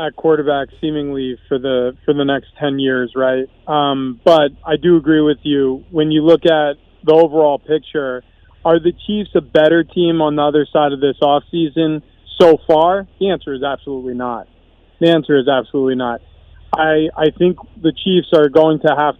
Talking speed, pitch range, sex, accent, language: 180 wpm, 140-170 Hz, male, American, English